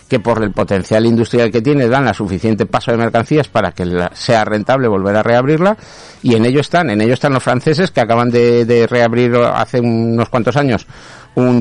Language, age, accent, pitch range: Spanish, 50-69, Spanish, 110-130 Hz